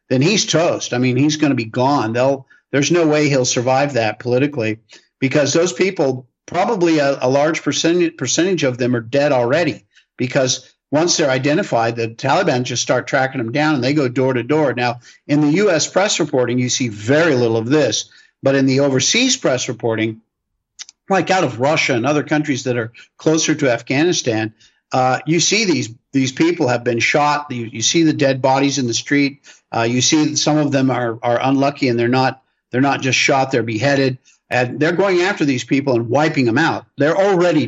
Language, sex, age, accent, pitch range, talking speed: English, male, 50-69, American, 120-155 Hz, 200 wpm